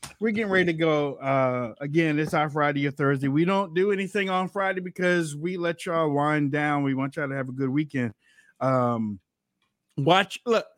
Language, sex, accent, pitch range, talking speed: English, male, American, 130-170 Hz, 195 wpm